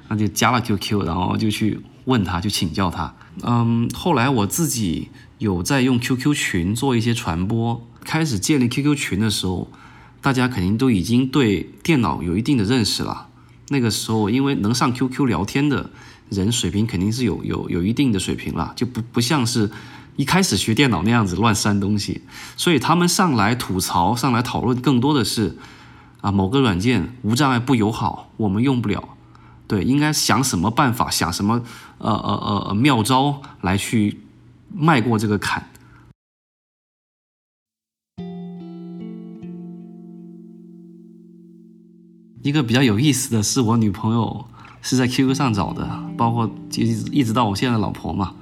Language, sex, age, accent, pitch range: Chinese, male, 20-39, native, 105-140 Hz